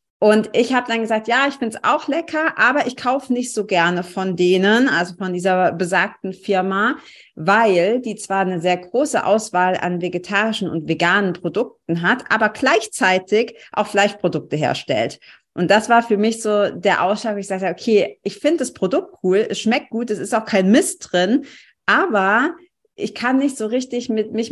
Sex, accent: female, German